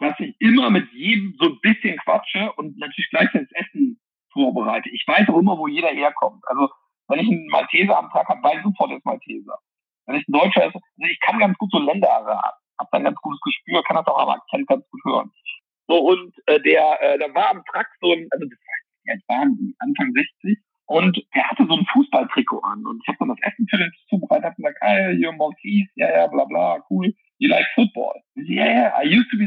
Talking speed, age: 230 wpm, 60-79